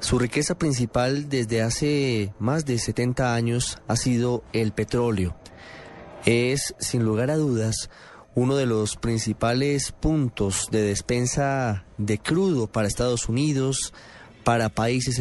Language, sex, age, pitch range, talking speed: Spanish, male, 30-49, 110-135 Hz, 125 wpm